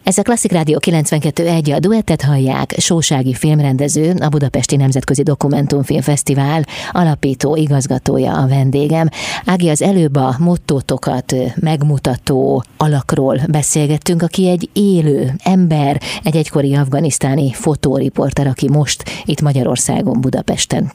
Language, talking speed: Hungarian, 110 wpm